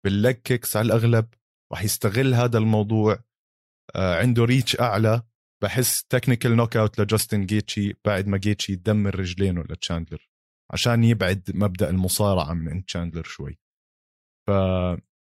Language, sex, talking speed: Arabic, male, 120 wpm